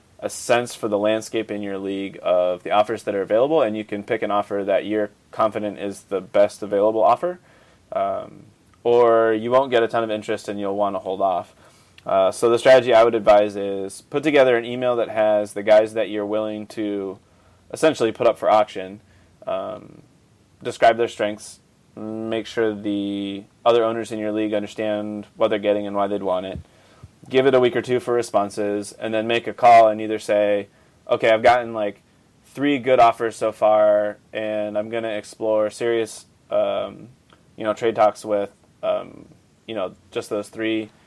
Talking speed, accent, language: 195 wpm, American, English